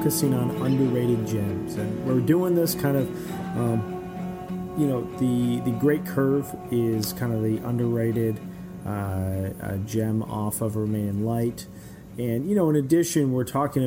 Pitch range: 110-125 Hz